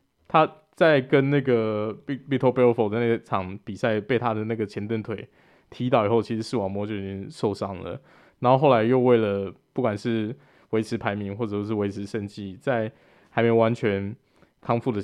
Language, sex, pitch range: Chinese, male, 100-120 Hz